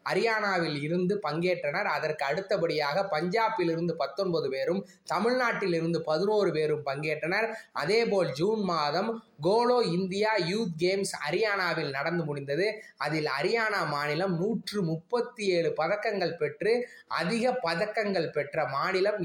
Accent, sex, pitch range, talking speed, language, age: native, male, 160-220 Hz, 105 wpm, Tamil, 20-39